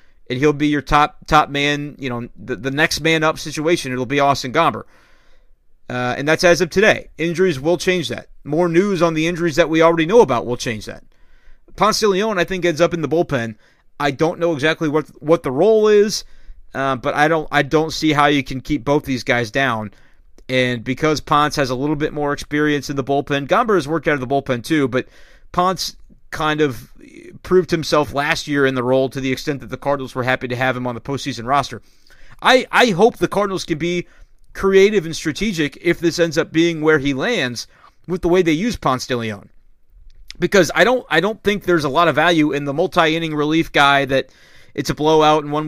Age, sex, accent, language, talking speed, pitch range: 30-49, male, American, English, 225 wpm, 135-170 Hz